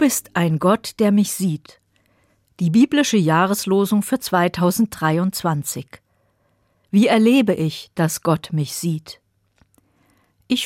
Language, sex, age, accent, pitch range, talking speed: German, female, 50-69, German, 135-205 Hz, 115 wpm